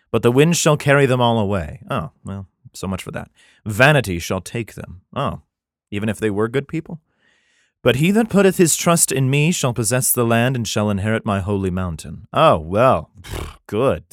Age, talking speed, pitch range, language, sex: 30-49, 195 wpm, 100-135 Hz, English, male